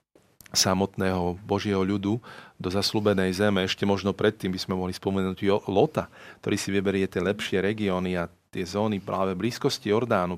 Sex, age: male, 40-59